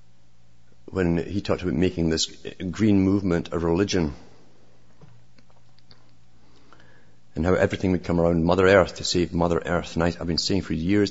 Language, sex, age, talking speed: English, male, 50-69, 145 wpm